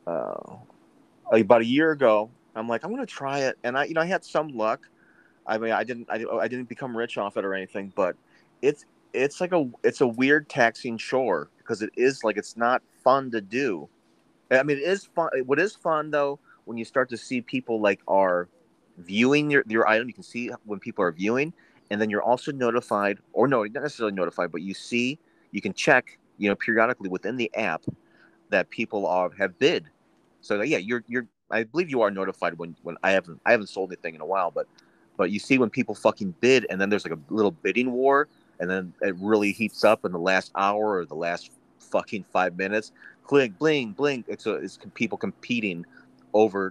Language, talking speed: English, 215 wpm